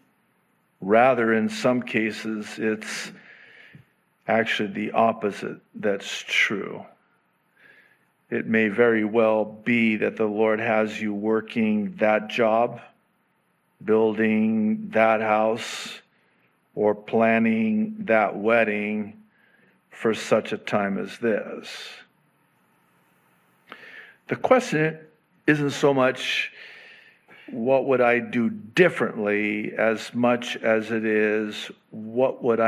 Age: 50-69